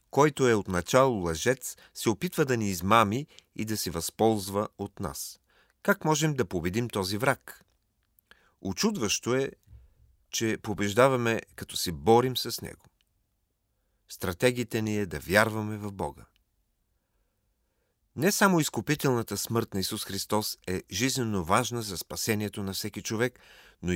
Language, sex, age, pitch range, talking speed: Bulgarian, male, 40-59, 95-125 Hz, 135 wpm